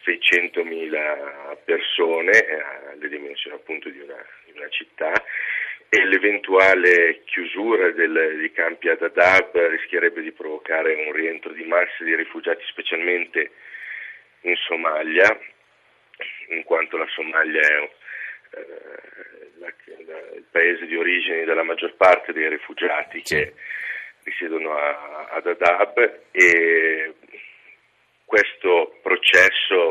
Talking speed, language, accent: 110 wpm, Italian, native